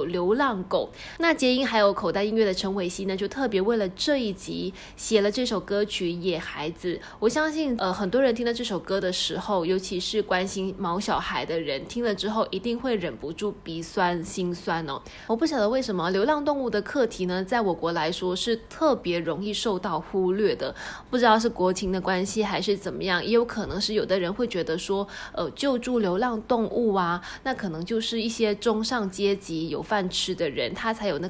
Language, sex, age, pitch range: Chinese, female, 20-39, 185-230 Hz